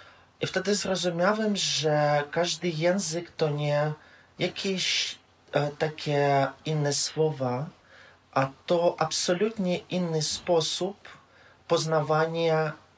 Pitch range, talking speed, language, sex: 140-175 Hz, 85 wpm, Polish, male